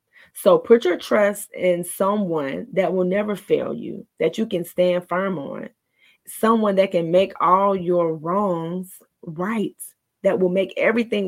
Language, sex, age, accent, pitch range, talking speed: English, female, 30-49, American, 180-220 Hz, 155 wpm